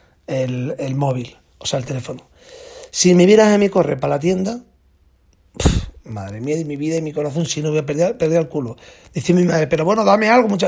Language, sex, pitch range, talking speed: Spanish, male, 130-175 Hz, 230 wpm